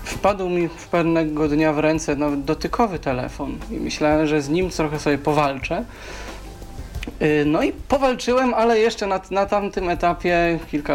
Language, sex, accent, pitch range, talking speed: Polish, male, native, 150-185 Hz, 155 wpm